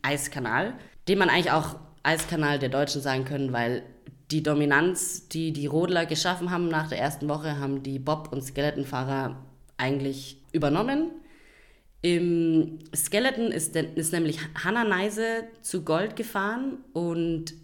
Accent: German